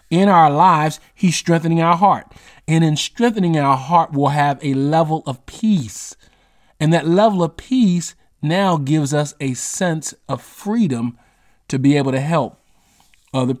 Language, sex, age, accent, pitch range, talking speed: English, male, 40-59, American, 125-160 Hz, 160 wpm